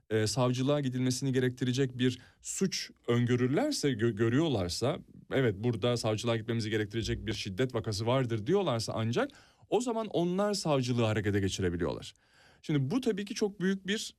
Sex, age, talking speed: male, 40-59, 140 wpm